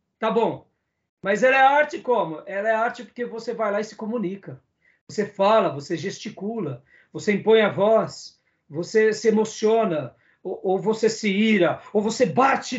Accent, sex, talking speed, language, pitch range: Brazilian, male, 170 wpm, Portuguese, 190-240 Hz